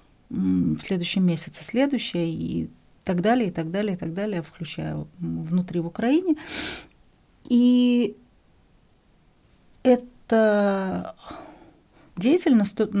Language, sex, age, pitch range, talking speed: Russian, female, 40-59, 170-215 Hz, 85 wpm